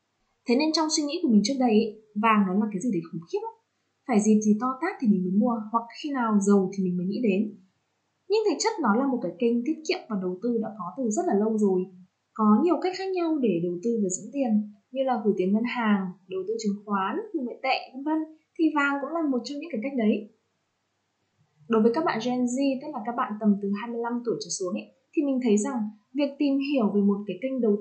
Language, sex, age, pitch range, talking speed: Vietnamese, female, 20-39, 200-260 Hz, 255 wpm